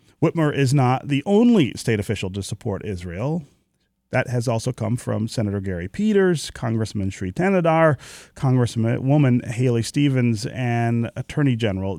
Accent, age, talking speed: American, 40-59, 135 wpm